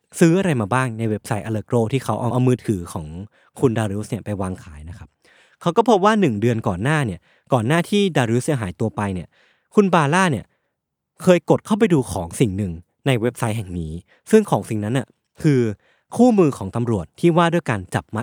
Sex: male